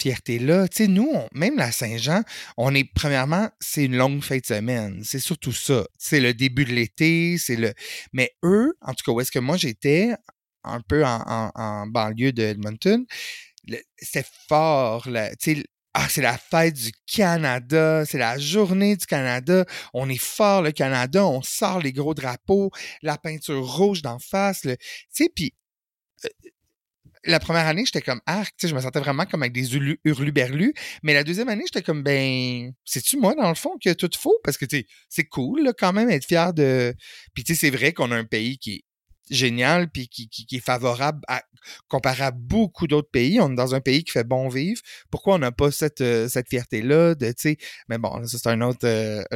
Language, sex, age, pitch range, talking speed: French, male, 30-49, 125-180 Hz, 215 wpm